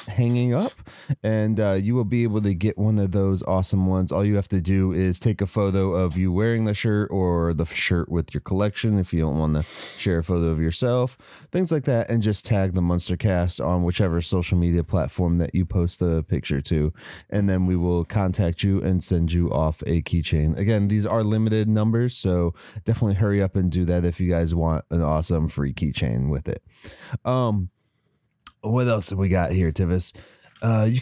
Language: English